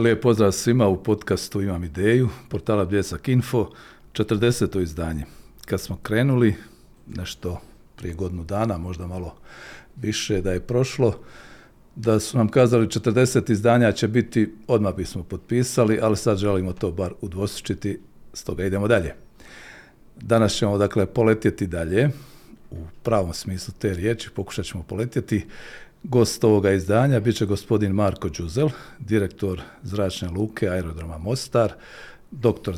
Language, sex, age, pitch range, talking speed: Croatian, male, 50-69, 95-115 Hz, 130 wpm